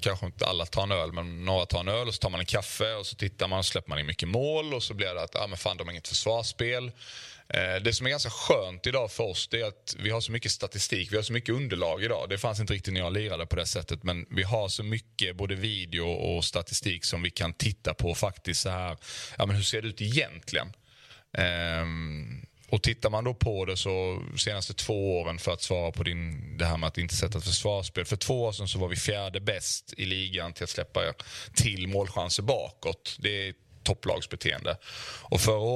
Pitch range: 90-110 Hz